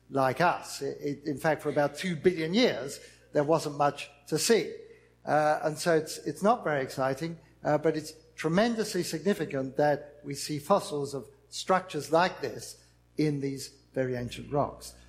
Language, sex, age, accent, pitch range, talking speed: English, male, 60-79, British, 140-185 Hz, 160 wpm